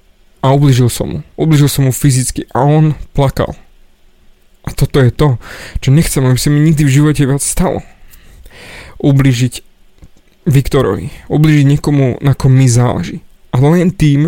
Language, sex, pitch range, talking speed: Slovak, male, 130-165 Hz, 150 wpm